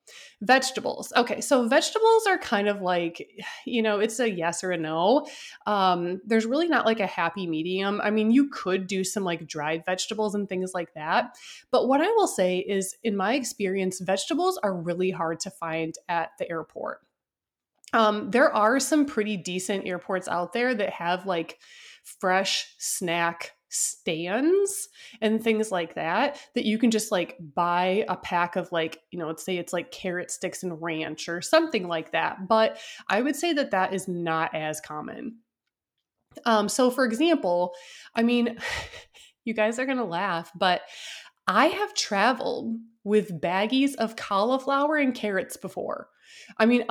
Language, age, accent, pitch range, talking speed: English, 20-39, American, 180-270 Hz, 170 wpm